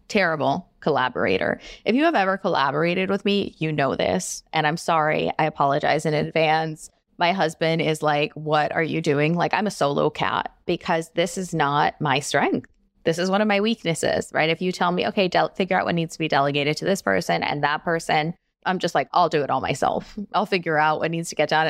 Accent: American